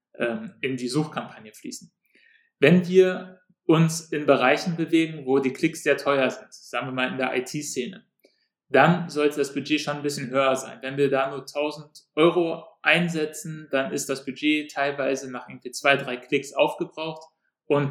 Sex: male